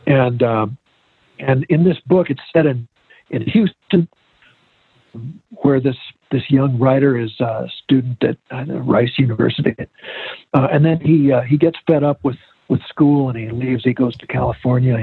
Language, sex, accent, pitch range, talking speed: English, male, American, 120-145 Hz, 170 wpm